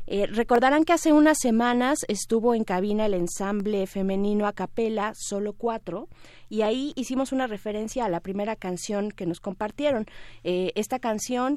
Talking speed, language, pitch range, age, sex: 160 wpm, Spanish, 180-220 Hz, 30-49, female